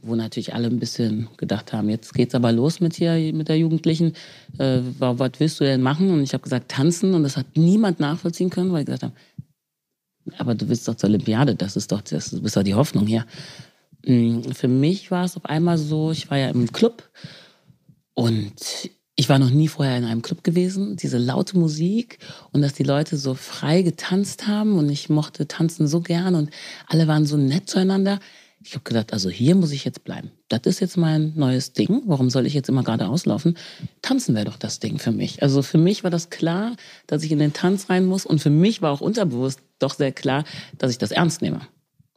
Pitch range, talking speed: 130-170 Hz, 220 wpm